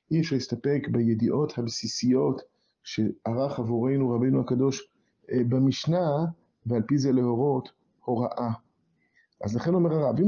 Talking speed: 115 wpm